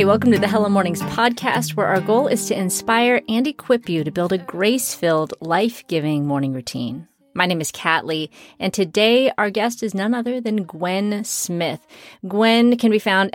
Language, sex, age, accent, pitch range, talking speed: English, female, 30-49, American, 165-215 Hz, 180 wpm